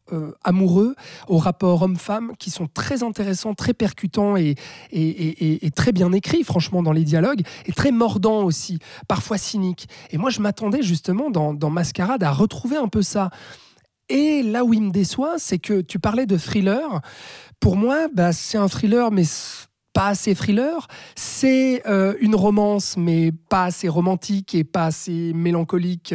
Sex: male